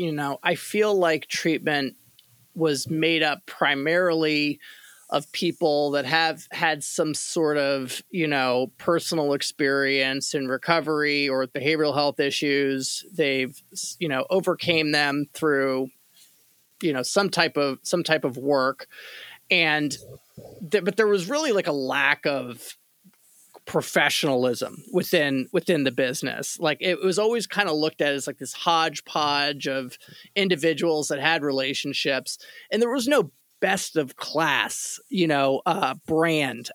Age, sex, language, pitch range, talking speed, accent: 30-49, male, English, 140-180 Hz, 140 wpm, American